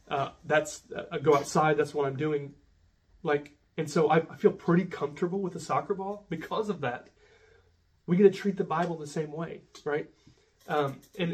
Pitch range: 145-190 Hz